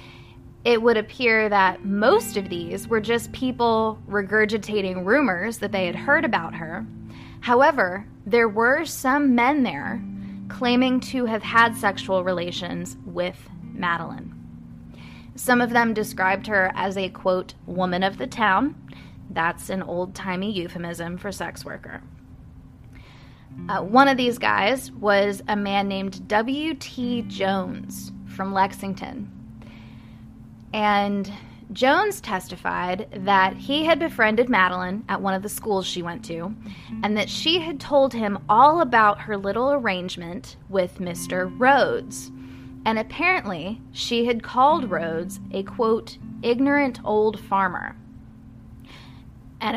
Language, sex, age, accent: English, female, 10-29, American